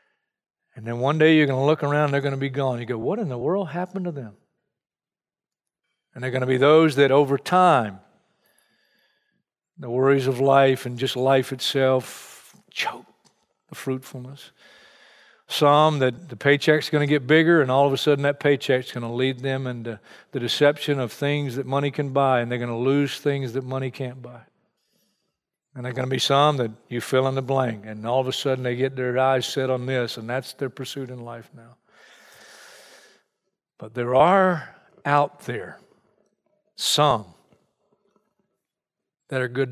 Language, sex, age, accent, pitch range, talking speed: English, male, 50-69, American, 125-150 Hz, 185 wpm